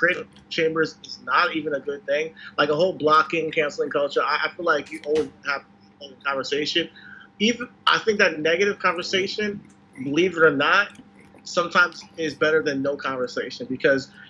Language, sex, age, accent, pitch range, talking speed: English, male, 30-49, American, 145-200 Hz, 165 wpm